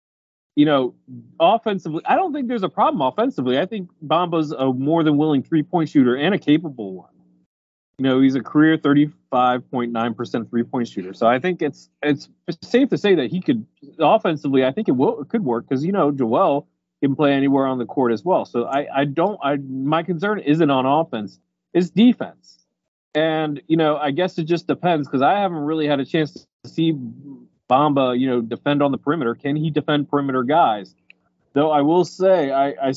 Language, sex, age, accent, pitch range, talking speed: English, male, 30-49, American, 120-165 Hz, 195 wpm